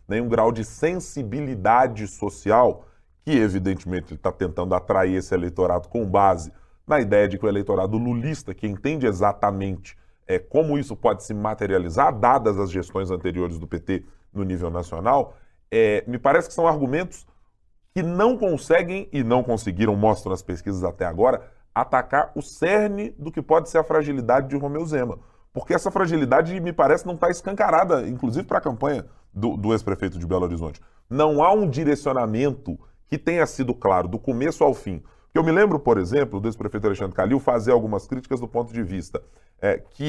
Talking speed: 170 wpm